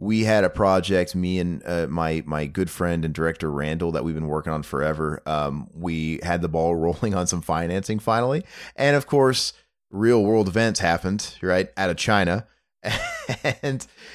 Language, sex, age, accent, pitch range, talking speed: English, male, 30-49, American, 85-105 Hz, 180 wpm